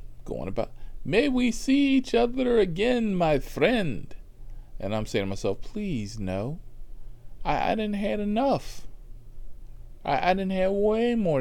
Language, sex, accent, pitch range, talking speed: English, male, American, 105-175 Hz, 145 wpm